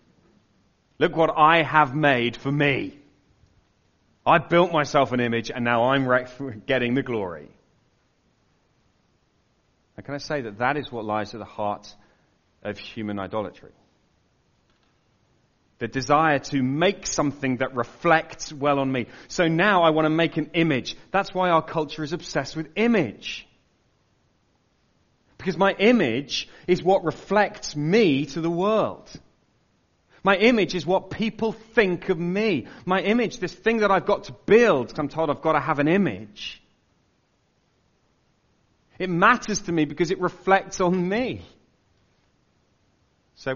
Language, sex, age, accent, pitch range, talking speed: English, male, 30-49, British, 140-190 Hz, 145 wpm